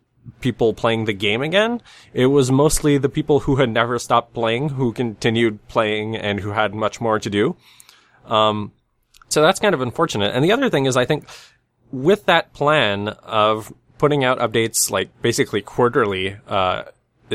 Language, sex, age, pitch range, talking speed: English, male, 20-39, 105-125 Hz, 170 wpm